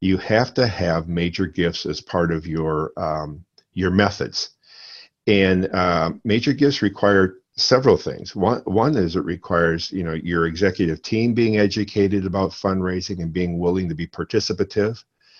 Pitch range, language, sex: 85-110 Hz, English, male